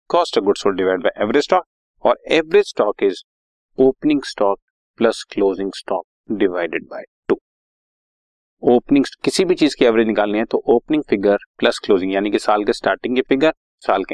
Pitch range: 120-185 Hz